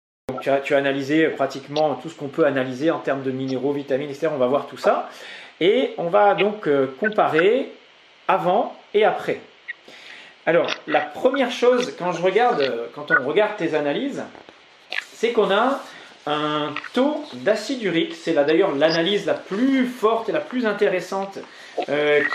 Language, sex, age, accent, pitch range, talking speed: English, male, 40-59, French, 145-215 Hz, 155 wpm